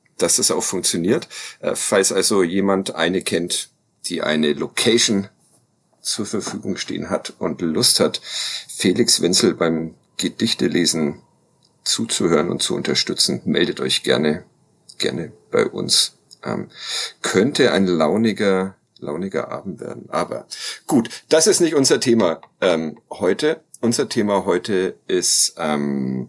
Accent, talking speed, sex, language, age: German, 125 wpm, male, German, 50-69